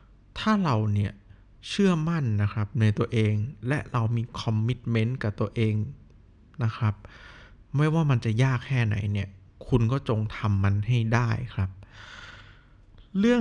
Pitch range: 110-135 Hz